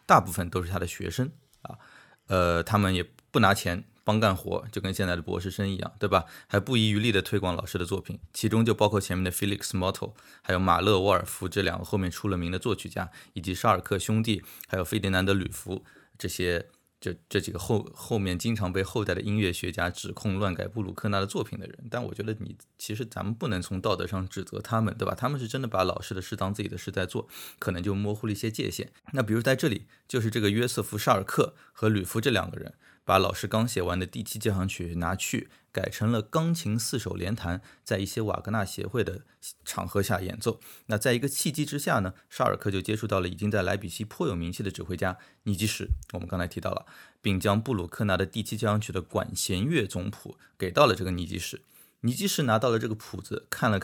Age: 20-39